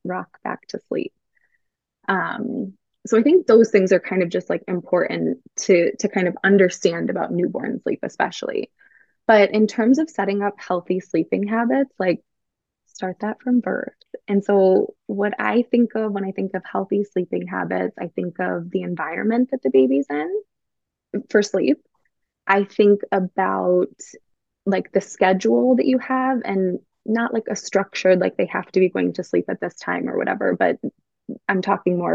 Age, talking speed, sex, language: 20-39, 175 wpm, female, English